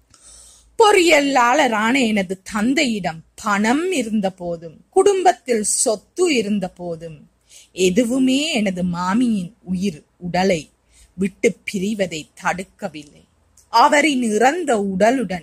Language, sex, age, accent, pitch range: Tamil, female, 30-49, native, 190-265 Hz